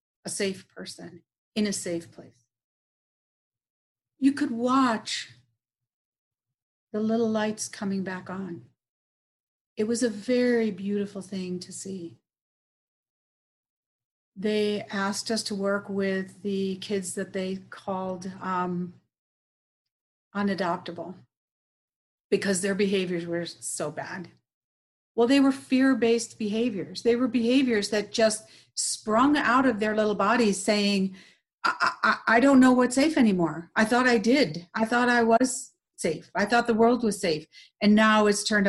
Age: 50-69